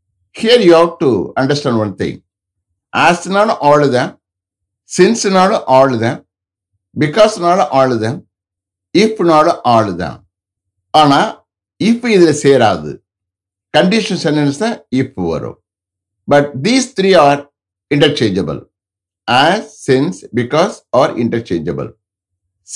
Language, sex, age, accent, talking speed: English, male, 60-79, Indian, 115 wpm